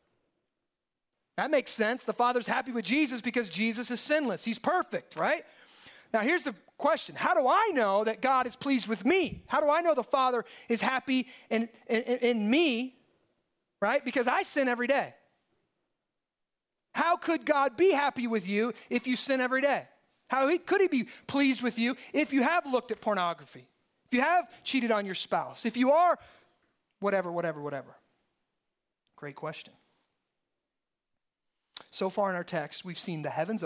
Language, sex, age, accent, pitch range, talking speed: English, male, 30-49, American, 175-260 Hz, 170 wpm